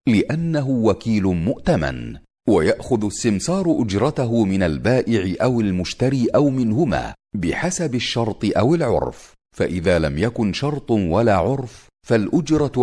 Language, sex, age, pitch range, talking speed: Arabic, male, 40-59, 95-135 Hz, 110 wpm